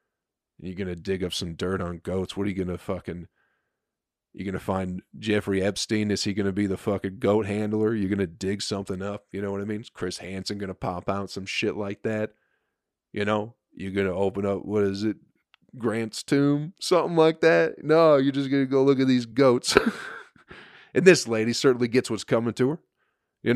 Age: 30-49